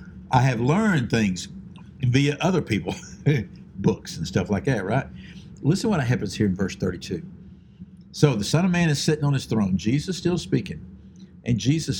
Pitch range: 110-165 Hz